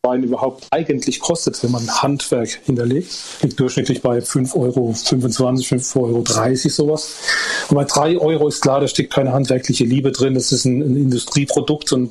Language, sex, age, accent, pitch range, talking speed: German, male, 40-59, German, 135-160 Hz, 170 wpm